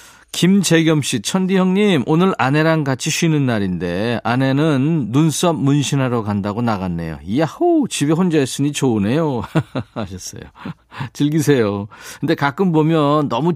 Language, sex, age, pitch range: Korean, male, 40-59, 115-165 Hz